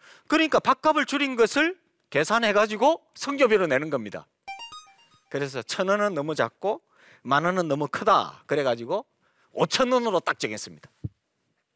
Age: 40-59